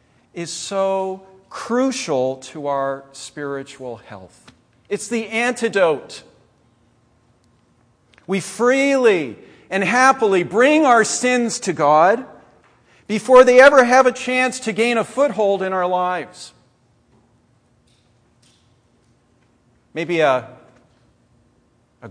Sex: male